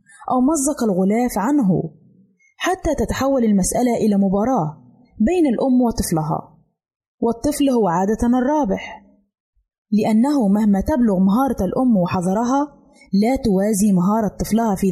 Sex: female